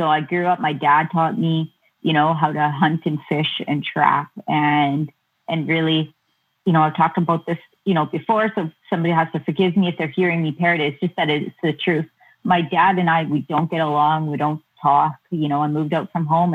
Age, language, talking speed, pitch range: 30-49, English, 230 wpm, 150-180 Hz